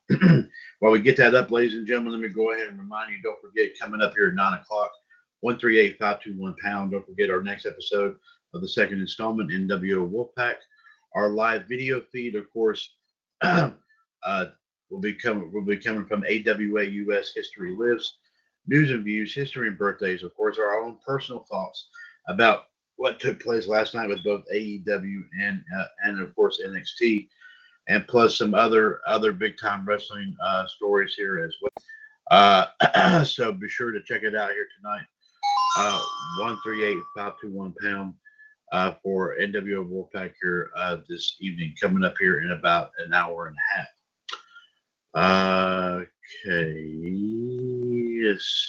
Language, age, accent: English, 50-69, American